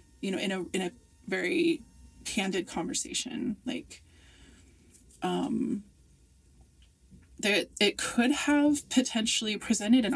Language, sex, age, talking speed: English, female, 20-39, 105 wpm